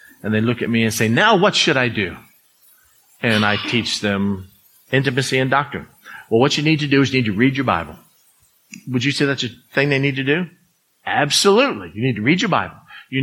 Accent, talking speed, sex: American, 225 wpm, male